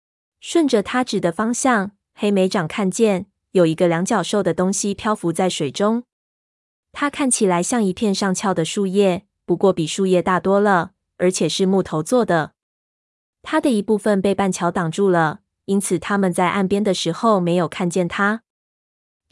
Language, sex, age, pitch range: Chinese, female, 20-39, 180-220 Hz